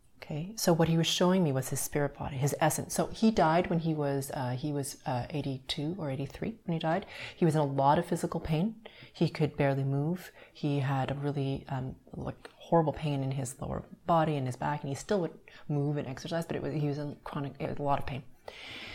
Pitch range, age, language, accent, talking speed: 140-170 Hz, 30-49, English, American, 240 wpm